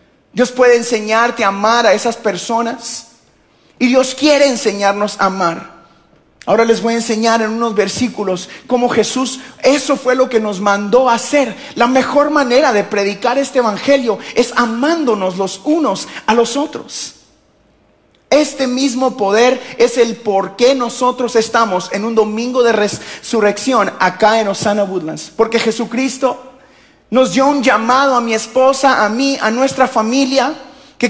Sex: male